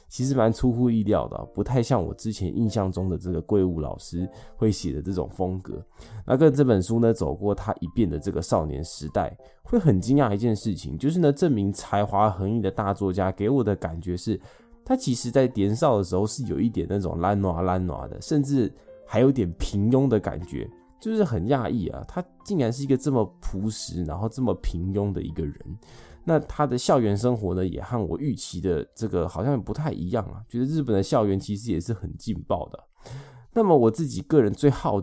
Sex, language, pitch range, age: male, Chinese, 90-125 Hz, 20-39